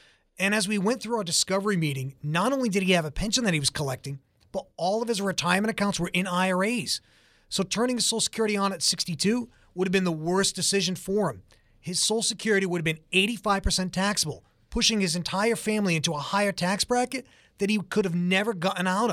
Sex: male